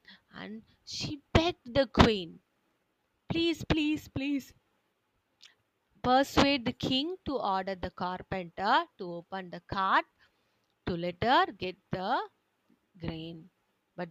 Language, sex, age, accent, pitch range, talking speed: English, female, 20-39, Indian, 190-305 Hz, 110 wpm